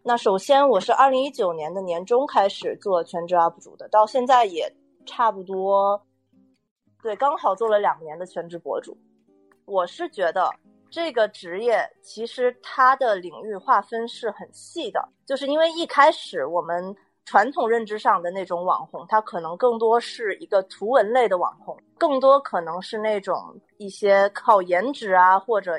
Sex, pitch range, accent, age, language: female, 185-270 Hz, native, 20-39, Chinese